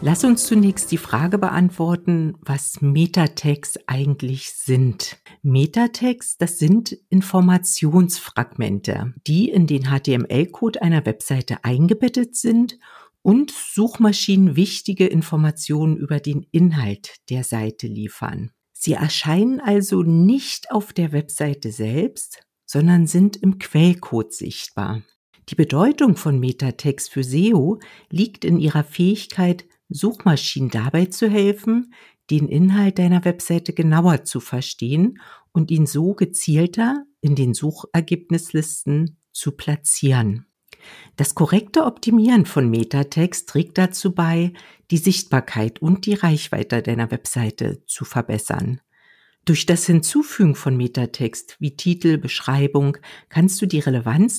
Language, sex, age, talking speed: German, female, 60-79, 115 wpm